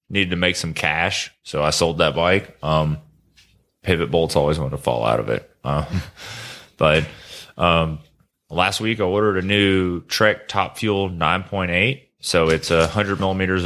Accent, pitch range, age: American, 80-95 Hz, 20-39